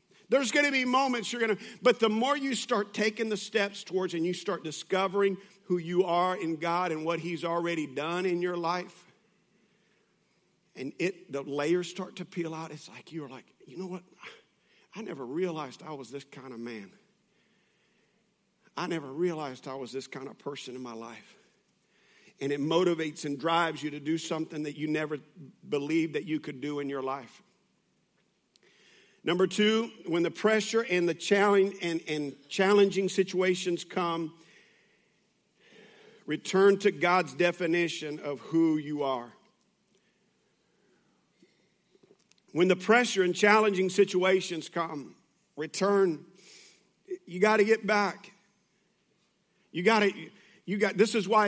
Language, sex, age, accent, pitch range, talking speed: English, male, 50-69, American, 160-205 Hz, 155 wpm